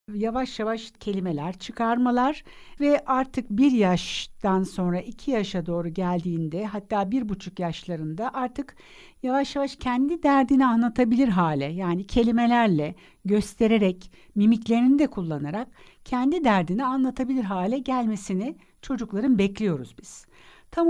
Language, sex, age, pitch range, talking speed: Turkish, female, 60-79, 180-265 Hz, 110 wpm